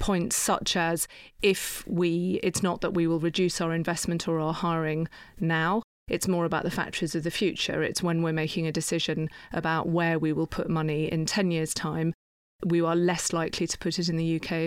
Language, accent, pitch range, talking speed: English, British, 160-175 Hz, 210 wpm